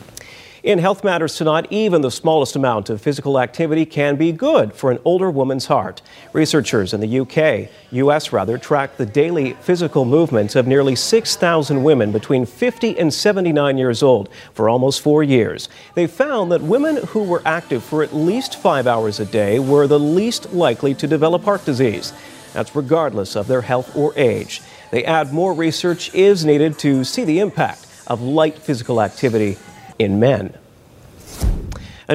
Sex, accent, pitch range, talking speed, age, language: male, American, 130-175 Hz, 170 wpm, 40-59, English